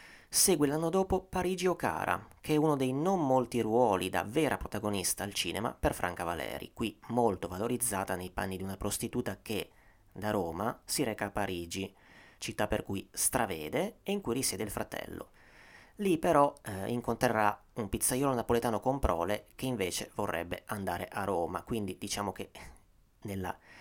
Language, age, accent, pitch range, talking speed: Italian, 30-49, native, 95-130 Hz, 165 wpm